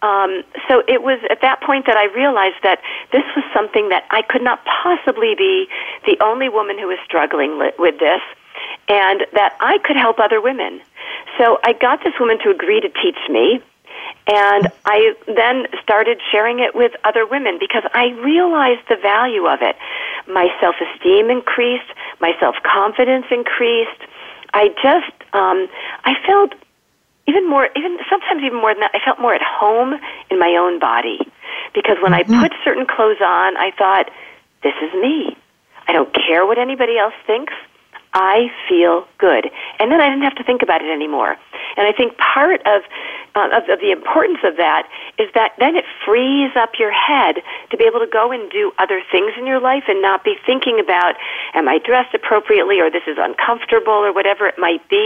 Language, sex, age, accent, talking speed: English, female, 40-59, American, 185 wpm